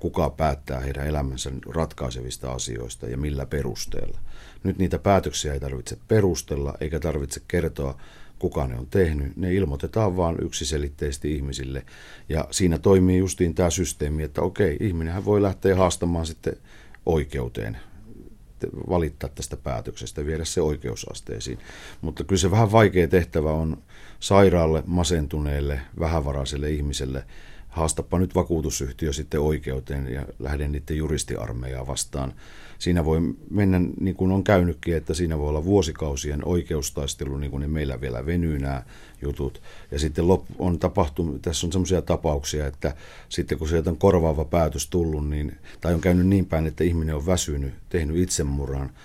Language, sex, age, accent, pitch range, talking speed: Finnish, male, 50-69, native, 70-90 Hz, 140 wpm